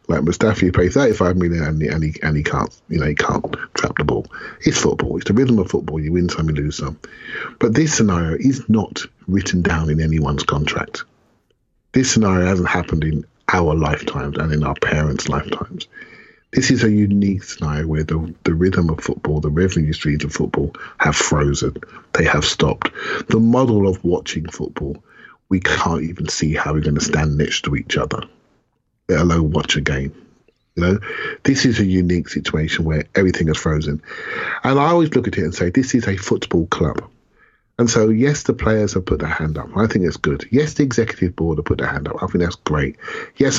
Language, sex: English, male